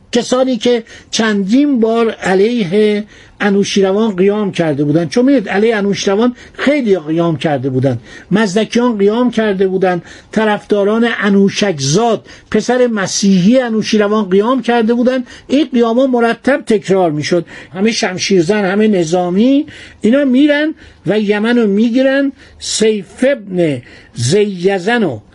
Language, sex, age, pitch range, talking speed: Persian, male, 60-79, 185-245 Hz, 110 wpm